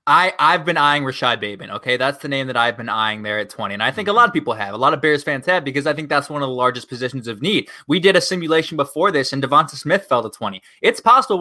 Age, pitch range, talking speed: 20-39, 130-180 Hz, 295 wpm